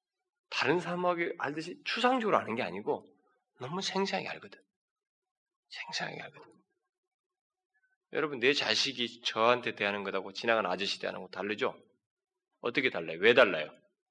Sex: male